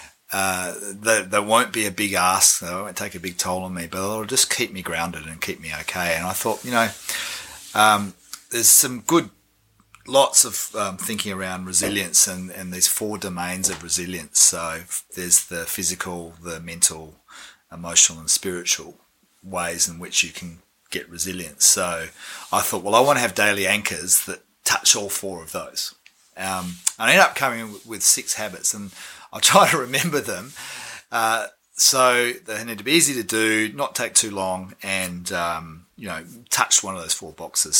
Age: 30-49